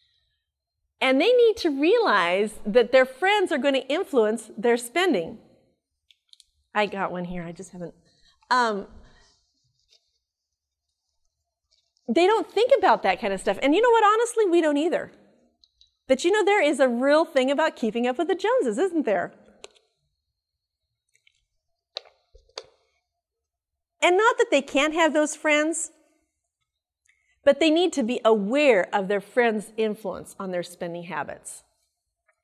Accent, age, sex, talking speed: American, 40-59, female, 140 wpm